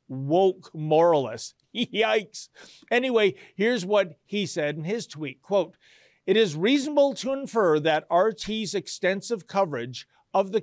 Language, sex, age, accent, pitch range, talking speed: English, male, 50-69, American, 140-190 Hz, 130 wpm